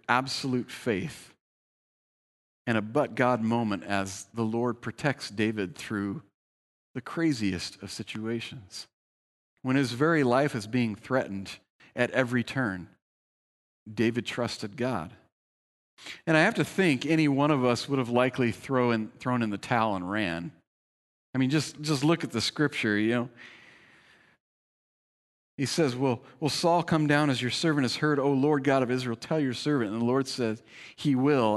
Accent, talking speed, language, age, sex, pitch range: American, 160 wpm, English, 40-59, male, 115-155 Hz